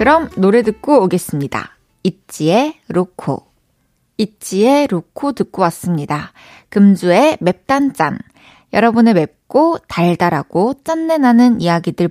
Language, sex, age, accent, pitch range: Korean, female, 20-39, native, 180-280 Hz